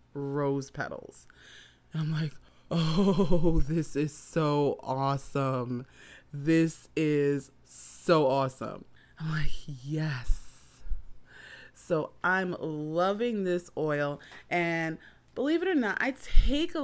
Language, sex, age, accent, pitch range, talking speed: English, female, 30-49, American, 150-185 Hz, 105 wpm